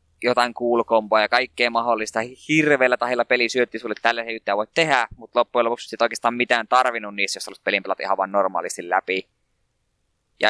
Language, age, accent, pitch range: Finnish, 20-39, native, 105-130 Hz